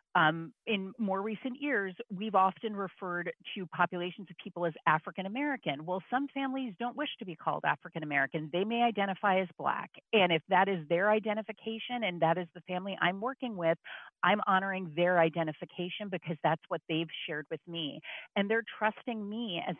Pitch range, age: 165-210 Hz, 40-59